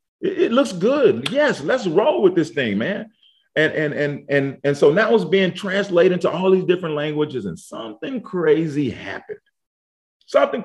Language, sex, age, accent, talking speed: English, male, 40-59, American, 170 wpm